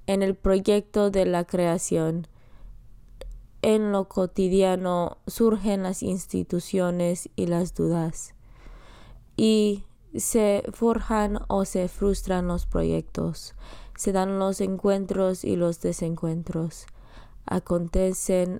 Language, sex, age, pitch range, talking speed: Spanish, female, 20-39, 170-195 Hz, 100 wpm